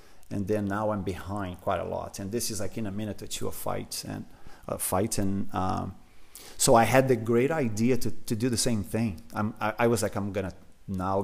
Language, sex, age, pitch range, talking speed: English, male, 30-49, 105-135 Hz, 235 wpm